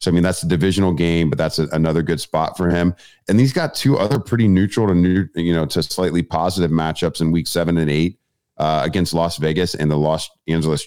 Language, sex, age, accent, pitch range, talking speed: English, male, 40-59, American, 80-95 Hz, 235 wpm